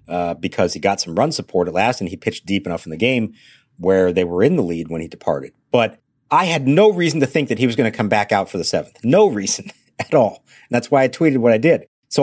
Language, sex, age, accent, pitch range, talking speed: English, male, 50-69, American, 100-140 Hz, 280 wpm